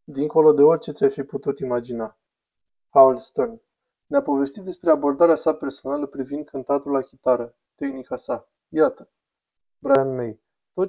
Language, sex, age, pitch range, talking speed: Romanian, male, 20-39, 130-155 Hz, 140 wpm